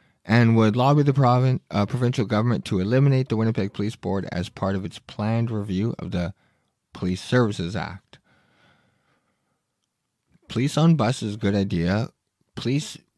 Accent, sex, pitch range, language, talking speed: American, male, 95-120 Hz, English, 150 wpm